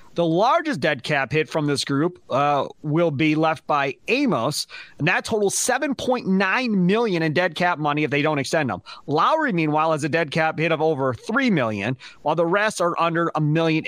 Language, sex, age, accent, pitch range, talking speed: English, male, 30-49, American, 145-190 Hz, 200 wpm